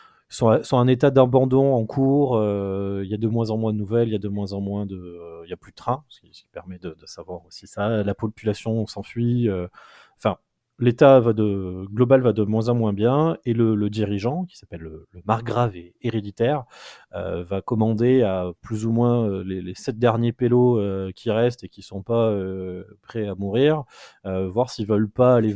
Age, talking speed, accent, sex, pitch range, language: 20-39, 225 wpm, French, male, 100-120 Hz, French